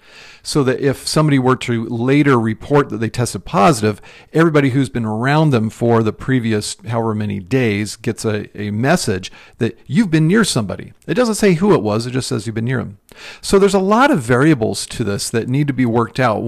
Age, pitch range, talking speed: 50-69, 115-150 Hz, 215 wpm